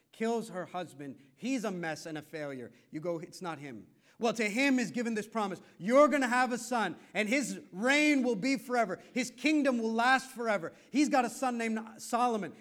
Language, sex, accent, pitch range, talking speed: English, male, American, 130-210 Hz, 210 wpm